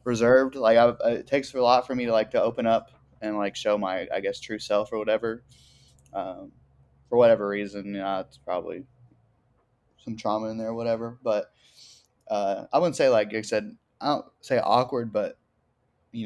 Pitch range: 110-125 Hz